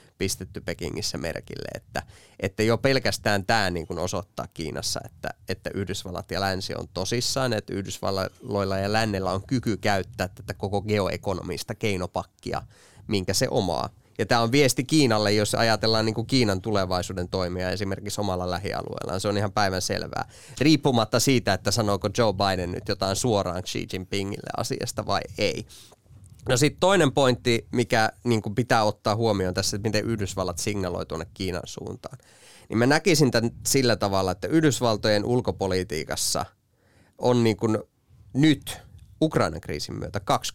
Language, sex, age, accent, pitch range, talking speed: Finnish, male, 20-39, native, 95-120 Hz, 145 wpm